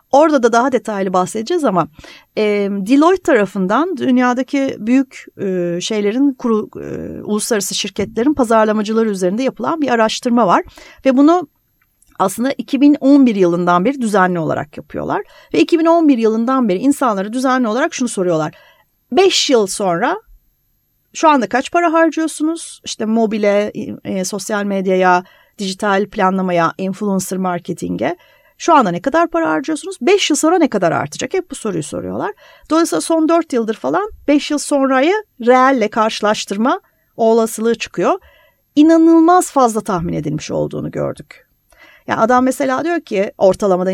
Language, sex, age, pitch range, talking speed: Turkish, female, 40-59, 200-295 Hz, 135 wpm